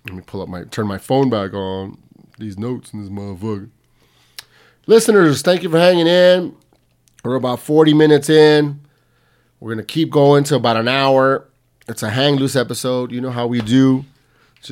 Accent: American